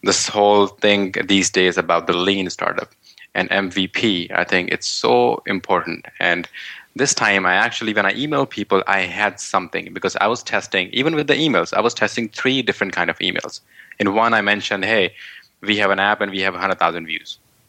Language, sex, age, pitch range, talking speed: English, male, 20-39, 95-115 Hz, 200 wpm